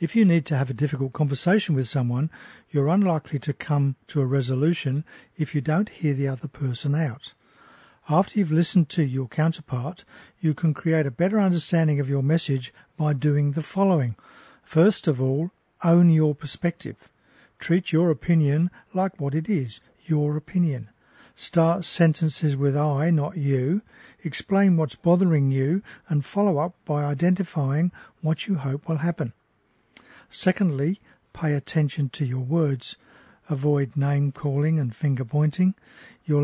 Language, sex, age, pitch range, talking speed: English, male, 50-69, 140-170 Hz, 150 wpm